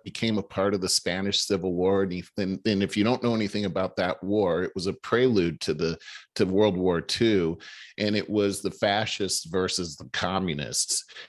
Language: English